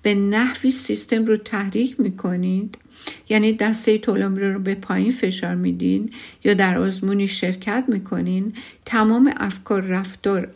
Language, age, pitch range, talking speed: Persian, 50-69, 195-255 Hz, 125 wpm